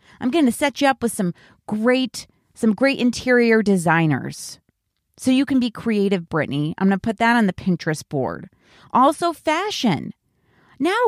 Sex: female